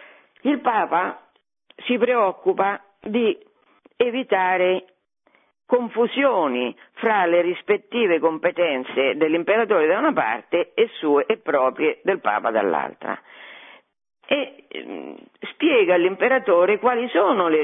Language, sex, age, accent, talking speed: Italian, female, 50-69, native, 95 wpm